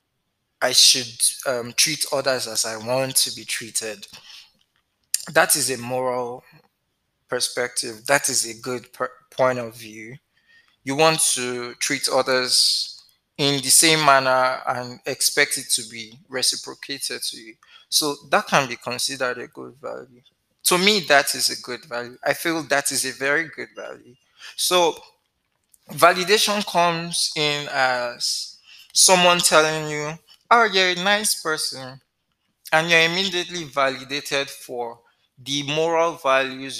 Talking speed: 135 wpm